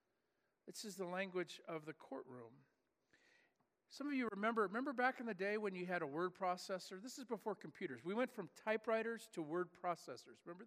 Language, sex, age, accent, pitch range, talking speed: English, male, 50-69, American, 180-240 Hz, 190 wpm